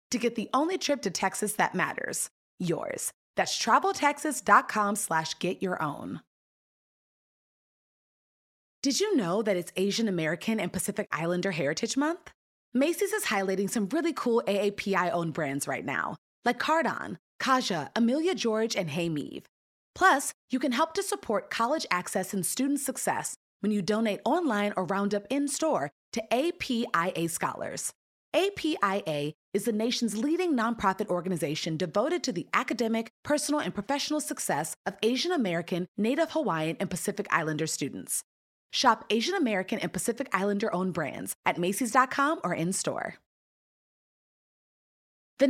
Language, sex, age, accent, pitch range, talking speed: English, female, 20-39, American, 180-275 Hz, 135 wpm